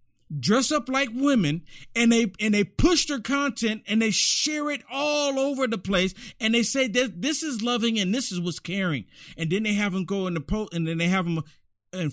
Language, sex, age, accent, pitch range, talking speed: English, male, 50-69, American, 165-260 Hz, 230 wpm